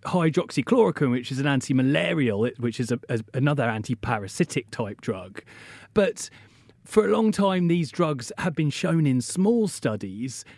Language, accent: English, British